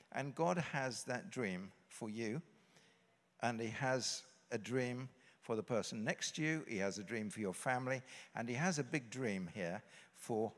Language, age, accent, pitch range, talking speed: English, 60-79, British, 120-165 Hz, 185 wpm